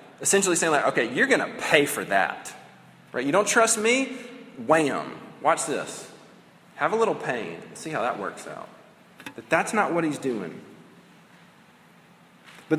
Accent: American